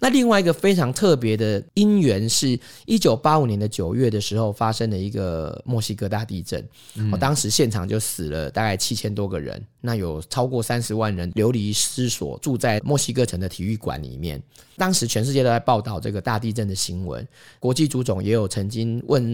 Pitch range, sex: 100-125 Hz, male